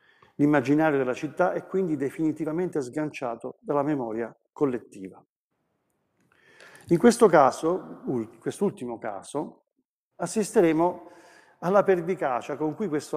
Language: Italian